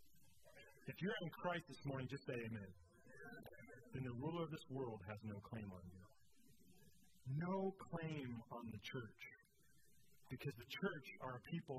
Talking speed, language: 155 wpm, English